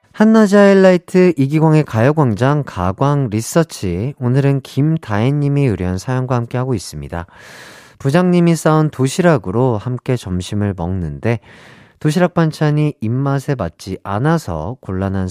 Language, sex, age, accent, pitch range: Korean, male, 40-59, native, 100-165 Hz